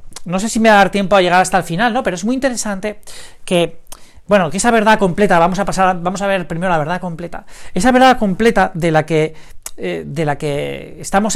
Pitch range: 155-220 Hz